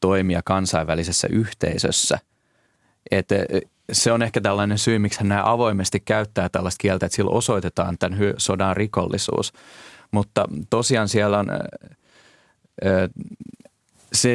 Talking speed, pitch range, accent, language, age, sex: 110 wpm, 90-105 Hz, native, Finnish, 30-49, male